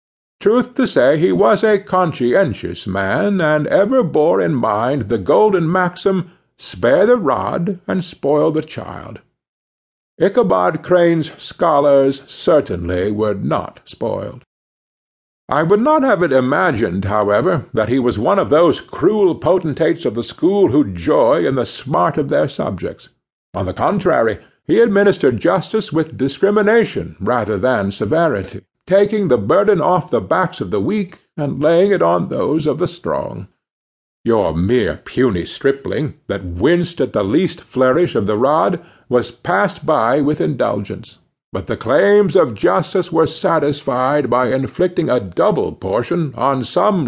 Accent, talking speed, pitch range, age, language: American, 150 wpm, 130-190 Hz, 60-79, English